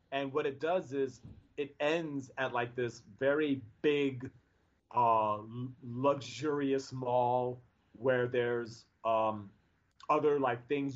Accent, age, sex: American, 30-49, male